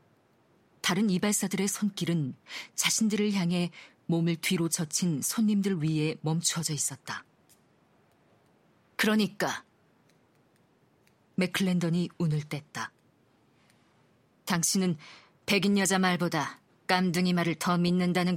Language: Korean